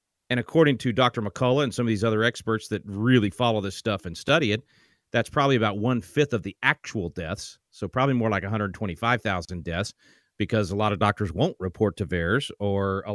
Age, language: 40-59, English